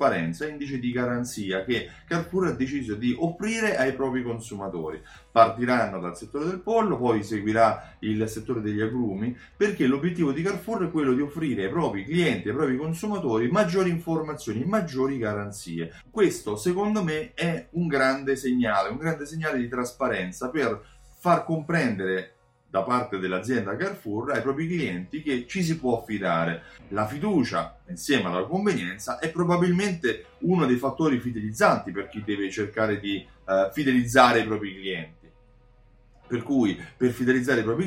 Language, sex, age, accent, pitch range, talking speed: Italian, male, 30-49, native, 105-155 Hz, 150 wpm